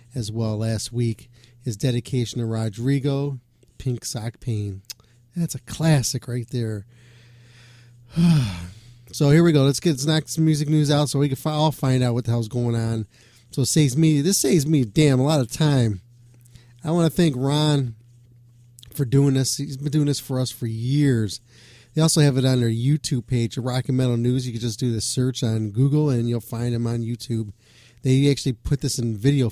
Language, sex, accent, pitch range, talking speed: English, male, American, 120-140 Hz, 200 wpm